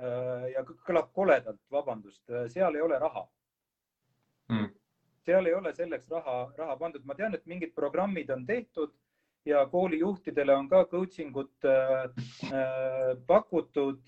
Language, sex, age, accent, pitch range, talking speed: English, male, 30-49, Finnish, 130-165 Hz, 125 wpm